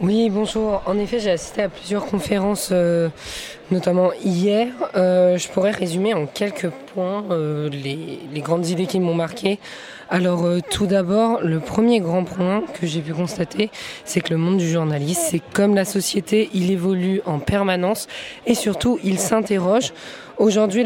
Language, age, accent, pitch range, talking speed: French, 20-39, French, 170-205 Hz, 165 wpm